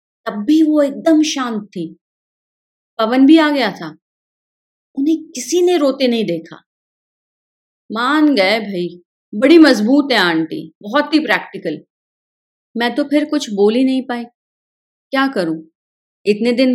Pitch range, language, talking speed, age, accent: 210-280 Hz, Hindi, 140 wpm, 30-49, native